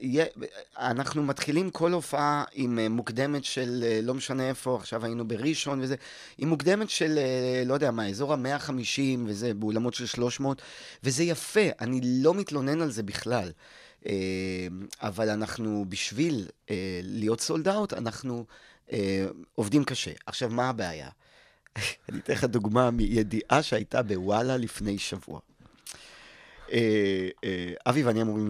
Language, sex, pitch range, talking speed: Hebrew, male, 100-140 Hz, 135 wpm